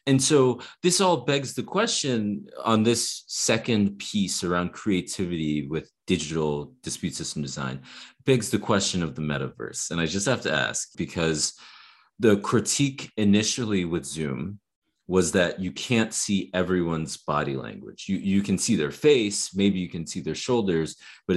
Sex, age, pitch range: male, 30-49, 80-100 Hz